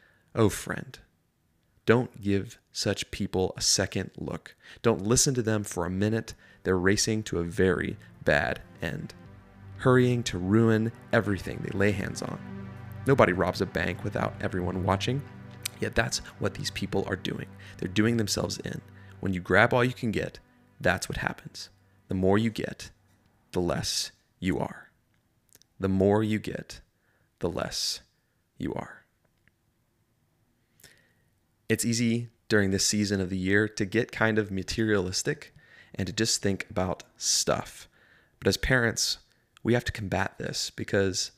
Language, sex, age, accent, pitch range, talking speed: English, male, 30-49, American, 95-110 Hz, 150 wpm